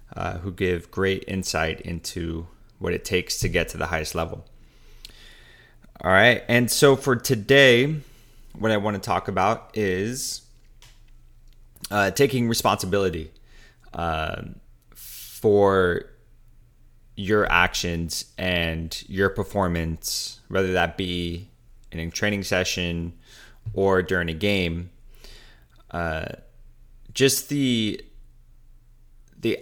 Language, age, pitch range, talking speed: English, 20-39, 85-115 Hz, 105 wpm